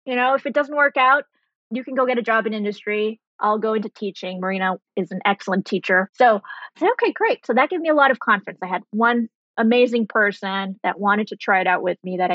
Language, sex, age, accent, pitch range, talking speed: English, female, 20-39, American, 185-235 Hz, 250 wpm